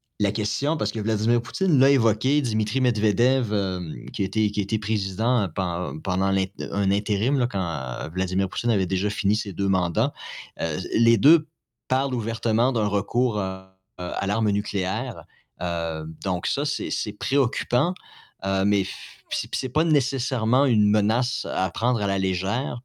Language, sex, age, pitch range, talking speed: French, male, 30-49, 95-125 Hz, 160 wpm